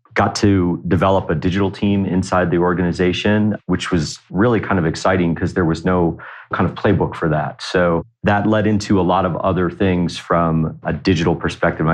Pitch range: 85-100 Hz